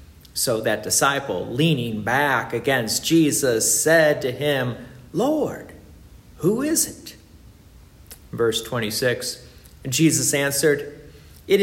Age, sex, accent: 50-69, male, American